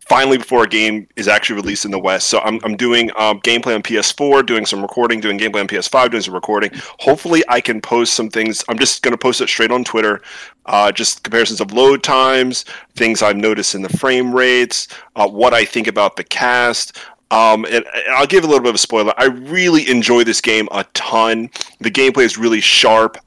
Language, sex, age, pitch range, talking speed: English, male, 30-49, 110-135 Hz, 220 wpm